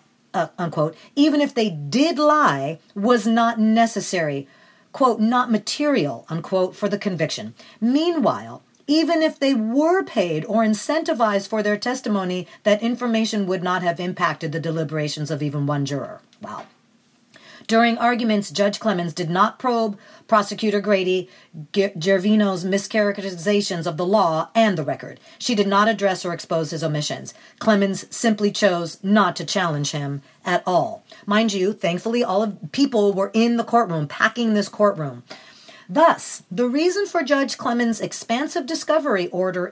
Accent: American